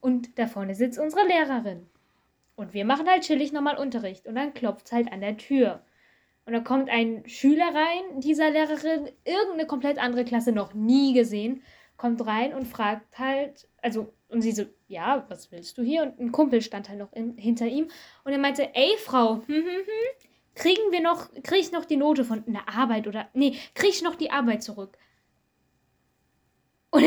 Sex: female